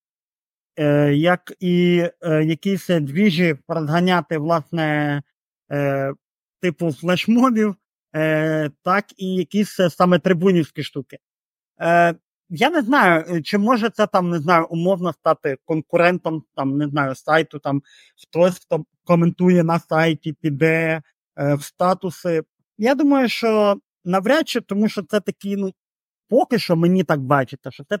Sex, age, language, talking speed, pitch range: male, 30-49, Ukrainian, 120 wpm, 150-195 Hz